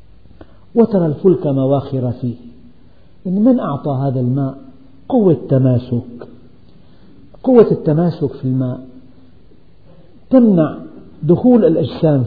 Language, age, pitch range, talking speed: Arabic, 50-69, 130-185 Hz, 90 wpm